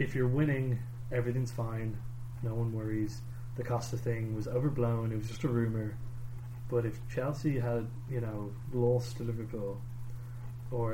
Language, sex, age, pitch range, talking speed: English, male, 20-39, 120-125 Hz, 155 wpm